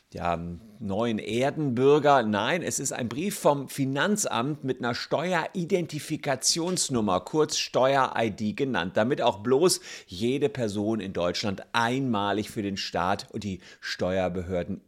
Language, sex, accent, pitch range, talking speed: German, male, German, 105-145 Hz, 120 wpm